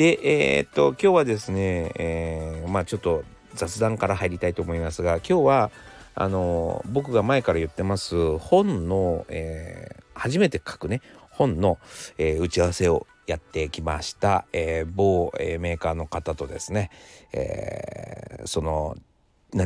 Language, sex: Japanese, male